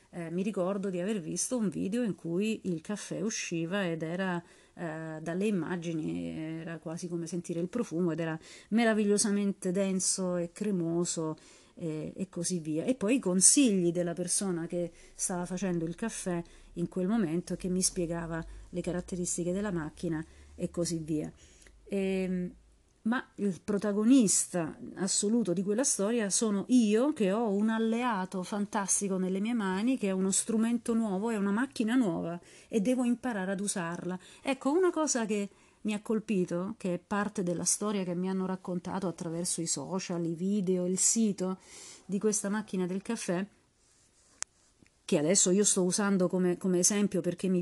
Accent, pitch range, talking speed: native, 180-225 Hz, 160 wpm